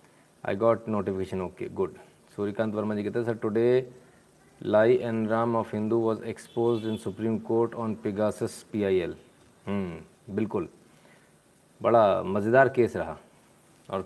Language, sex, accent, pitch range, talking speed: Hindi, male, native, 110-130 Hz, 135 wpm